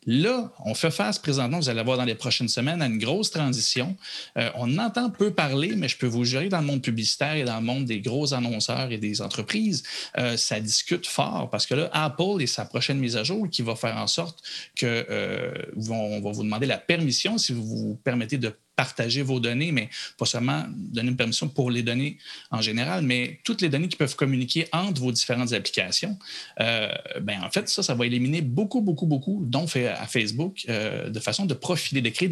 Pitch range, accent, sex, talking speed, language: 120-165 Hz, Canadian, male, 220 wpm, French